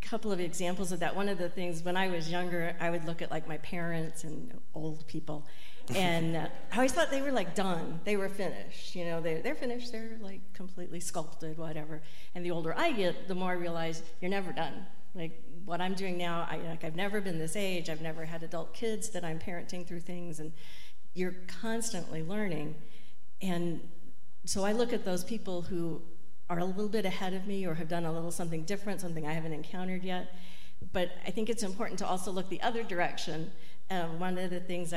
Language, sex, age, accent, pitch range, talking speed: English, female, 50-69, American, 165-195 Hz, 215 wpm